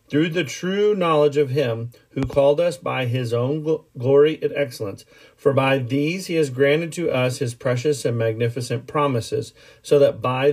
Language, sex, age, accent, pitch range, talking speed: English, male, 40-59, American, 120-150 Hz, 175 wpm